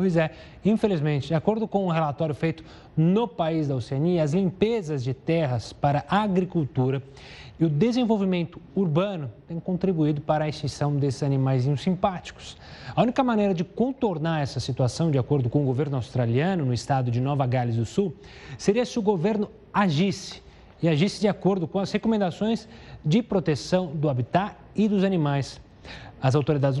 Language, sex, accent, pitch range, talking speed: Portuguese, male, Brazilian, 140-195 Hz, 165 wpm